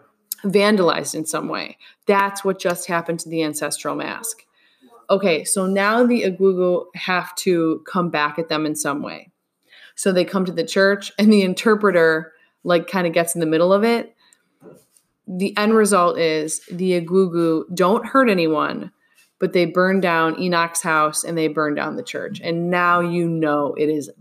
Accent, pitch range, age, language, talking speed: American, 165-205 Hz, 20-39, English, 175 wpm